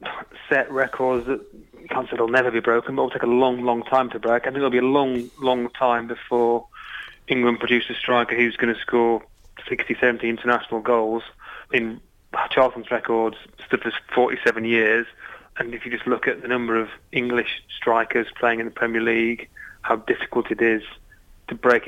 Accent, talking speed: British, 190 wpm